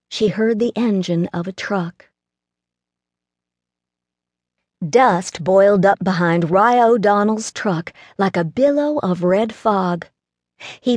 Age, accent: 50-69, American